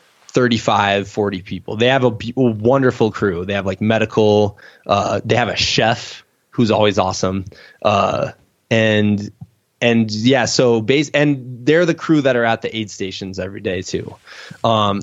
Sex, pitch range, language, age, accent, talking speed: male, 105-135 Hz, English, 20-39, American, 160 wpm